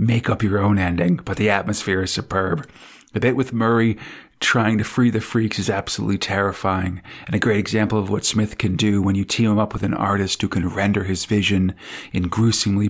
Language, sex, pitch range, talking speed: English, male, 100-115 Hz, 215 wpm